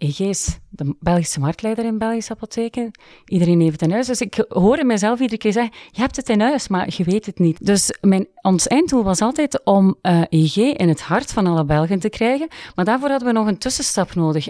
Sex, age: female, 40-59